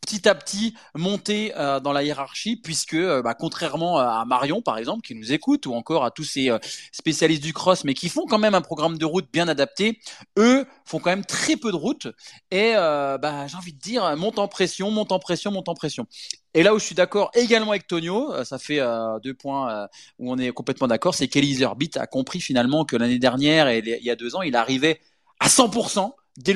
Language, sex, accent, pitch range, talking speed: French, male, French, 140-205 Hz, 235 wpm